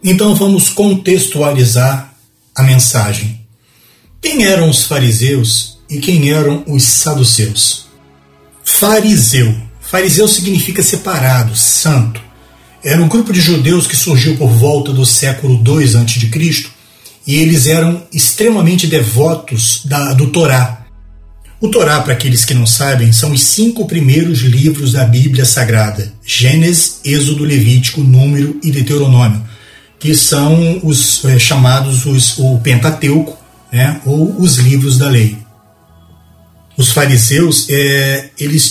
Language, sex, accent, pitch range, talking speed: Portuguese, male, Brazilian, 120-160 Hz, 120 wpm